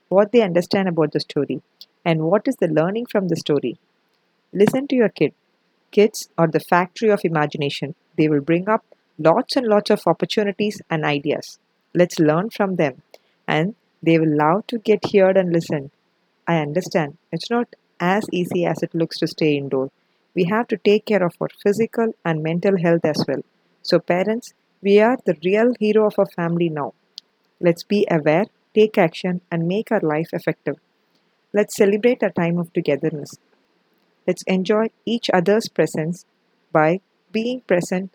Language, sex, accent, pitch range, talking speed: English, female, Indian, 165-210 Hz, 170 wpm